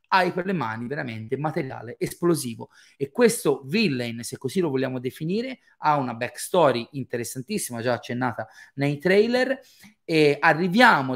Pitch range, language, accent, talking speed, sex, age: 120-165 Hz, Italian, native, 135 wpm, male, 30-49